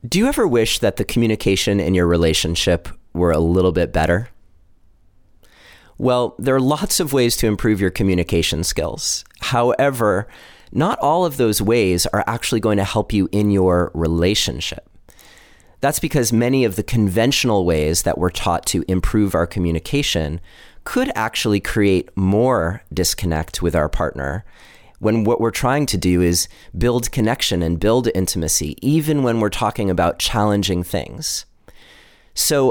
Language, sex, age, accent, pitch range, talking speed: English, male, 30-49, American, 90-120 Hz, 150 wpm